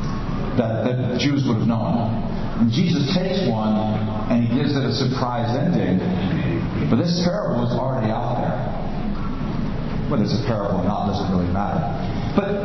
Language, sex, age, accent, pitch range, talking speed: English, male, 50-69, American, 120-175 Hz, 170 wpm